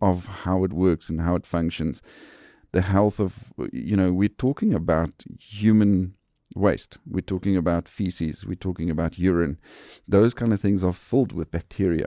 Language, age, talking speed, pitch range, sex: English, 40-59, 170 wpm, 95-125 Hz, male